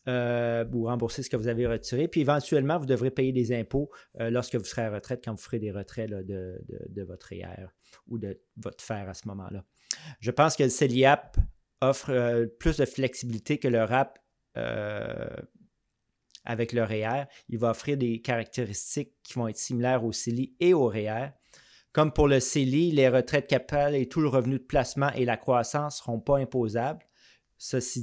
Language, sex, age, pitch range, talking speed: French, male, 30-49, 115-140 Hz, 195 wpm